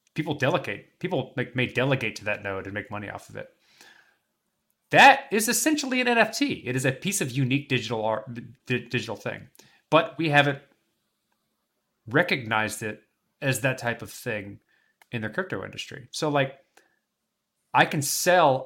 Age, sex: 30-49, male